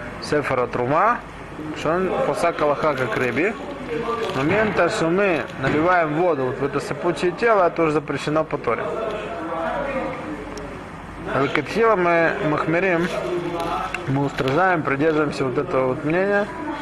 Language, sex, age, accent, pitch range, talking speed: Russian, male, 20-39, native, 140-175 Hz, 115 wpm